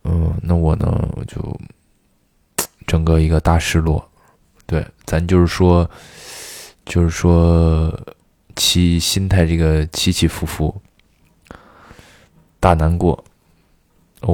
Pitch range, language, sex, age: 80-90 Hz, Chinese, male, 20-39